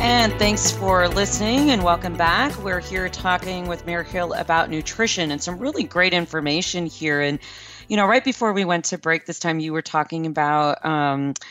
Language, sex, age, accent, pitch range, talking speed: English, female, 40-59, American, 145-180 Hz, 195 wpm